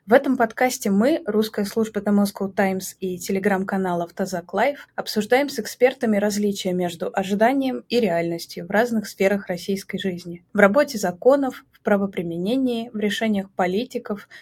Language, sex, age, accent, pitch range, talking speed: Russian, female, 20-39, native, 190-220 Hz, 140 wpm